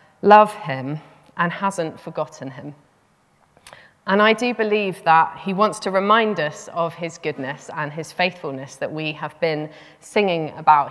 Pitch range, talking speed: 150-190 Hz, 155 wpm